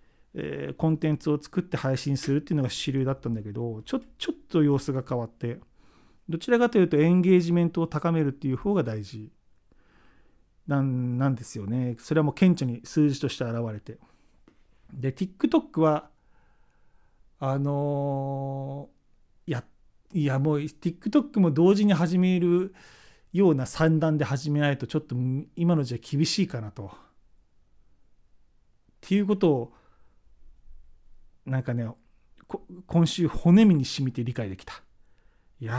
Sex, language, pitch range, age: male, Japanese, 120-175 Hz, 40-59